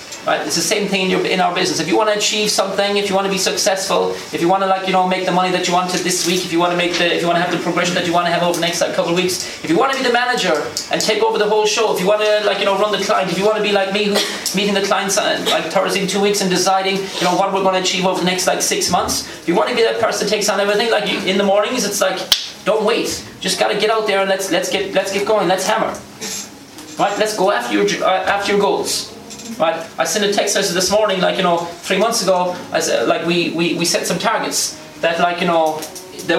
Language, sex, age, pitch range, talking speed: English, male, 30-49, 170-195 Hz, 310 wpm